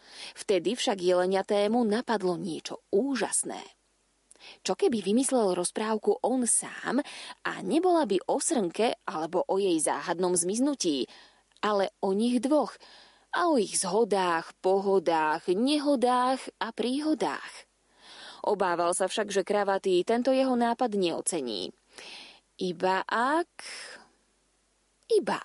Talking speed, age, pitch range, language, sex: 110 wpm, 20-39, 185-255 Hz, Slovak, female